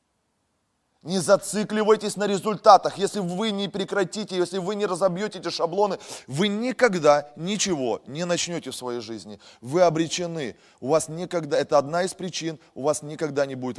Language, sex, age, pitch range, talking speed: Russian, male, 20-39, 160-230 Hz, 155 wpm